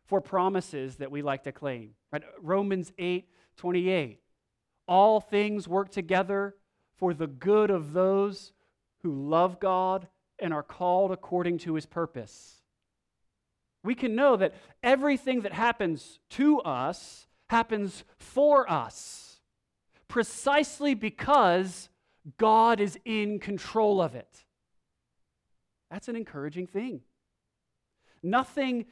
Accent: American